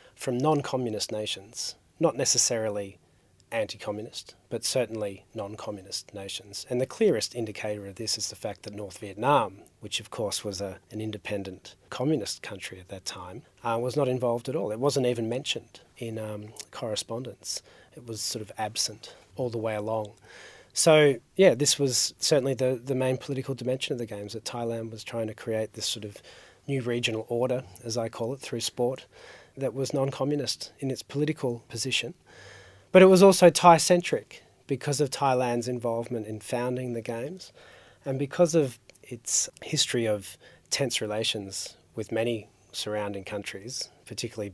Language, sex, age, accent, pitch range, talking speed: English, male, 40-59, Australian, 105-135 Hz, 160 wpm